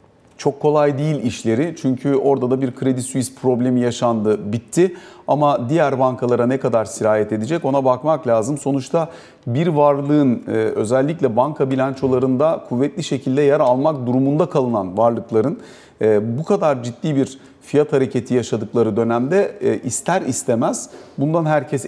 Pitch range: 130-155 Hz